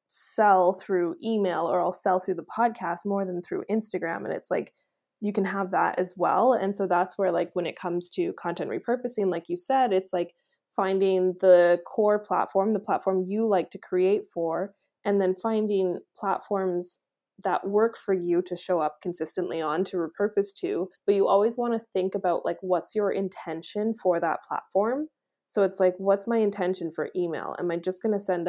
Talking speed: 195 wpm